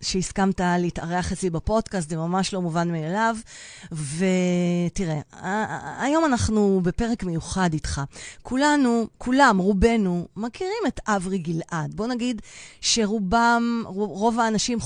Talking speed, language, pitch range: 110 wpm, Hebrew, 165-215 Hz